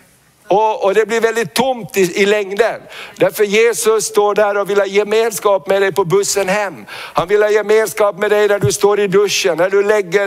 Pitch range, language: 195-220 Hz, Swedish